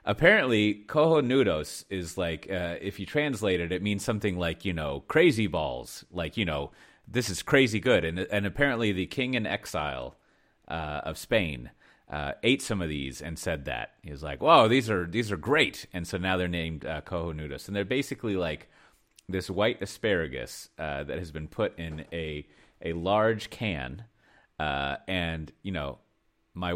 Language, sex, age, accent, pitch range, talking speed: English, male, 30-49, American, 75-105 Hz, 180 wpm